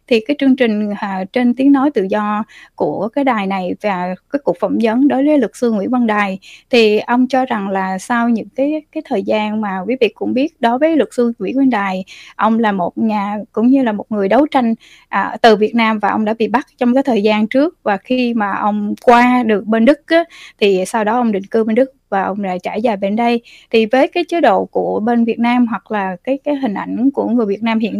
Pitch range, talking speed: 210-270 Hz, 255 wpm